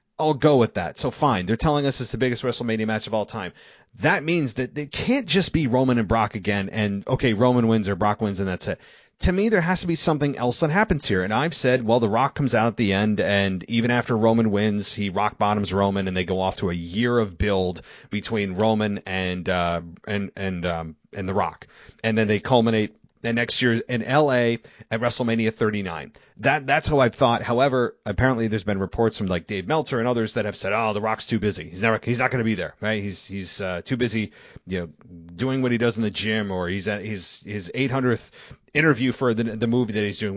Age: 30-49